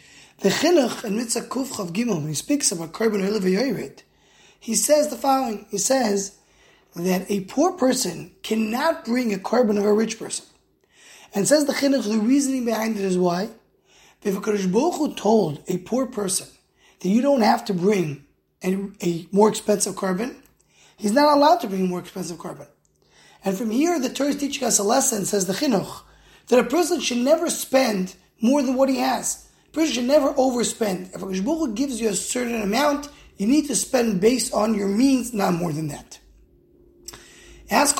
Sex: male